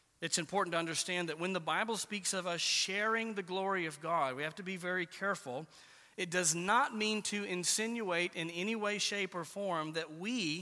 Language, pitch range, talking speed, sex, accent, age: English, 160-200 Hz, 205 wpm, male, American, 40-59